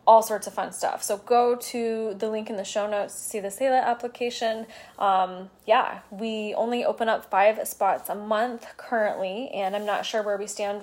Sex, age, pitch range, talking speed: female, 20-39, 210-255 Hz, 205 wpm